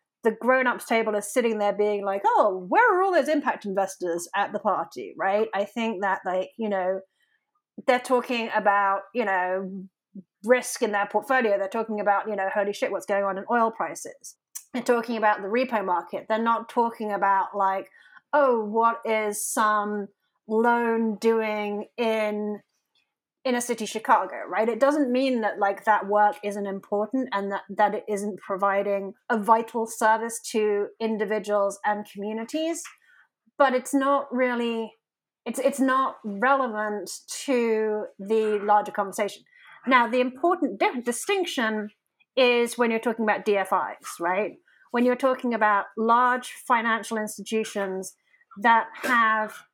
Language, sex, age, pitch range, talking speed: English, female, 30-49, 205-250 Hz, 150 wpm